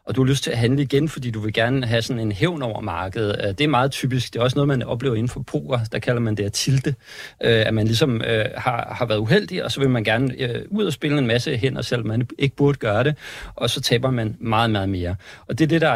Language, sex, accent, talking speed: Danish, male, native, 275 wpm